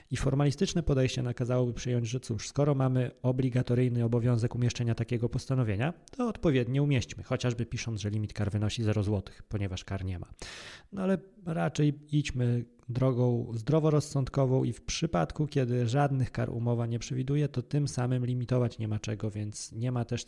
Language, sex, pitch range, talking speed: Polish, male, 110-130 Hz, 165 wpm